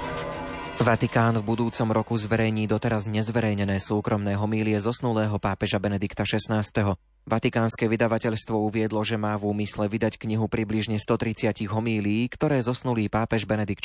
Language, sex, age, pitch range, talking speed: Slovak, male, 20-39, 100-115 Hz, 125 wpm